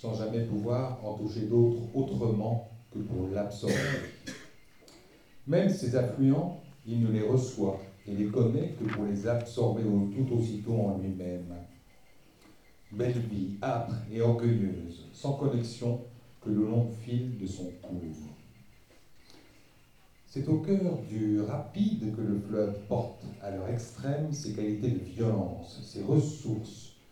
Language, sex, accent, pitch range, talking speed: French, male, French, 100-135 Hz, 135 wpm